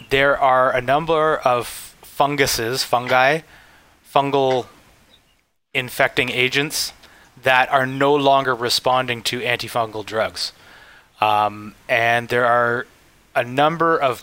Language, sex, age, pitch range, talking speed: English, male, 20-39, 115-140 Hz, 105 wpm